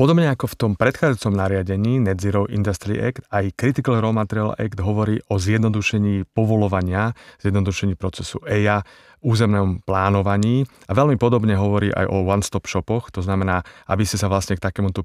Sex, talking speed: male, 160 wpm